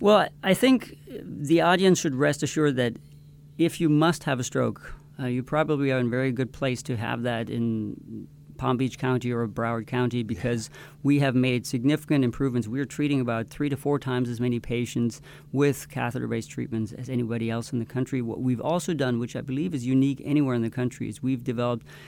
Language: English